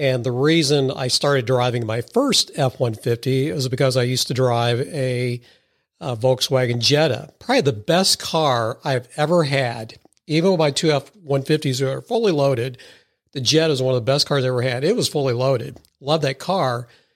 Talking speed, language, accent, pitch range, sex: 185 wpm, English, American, 130-150 Hz, male